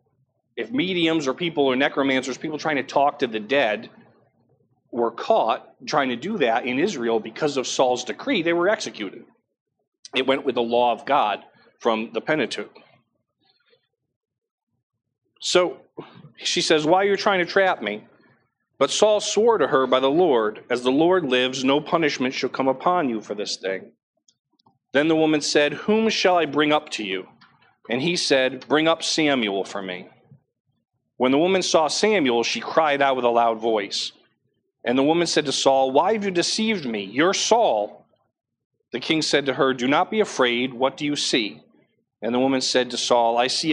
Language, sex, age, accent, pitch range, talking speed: English, male, 40-59, American, 120-160 Hz, 185 wpm